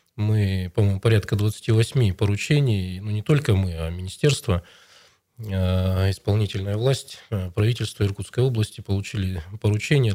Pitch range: 95-115 Hz